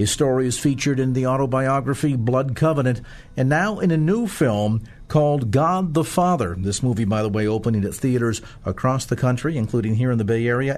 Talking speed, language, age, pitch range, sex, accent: 200 wpm, English, 50-69, 110-130 Hz, male, American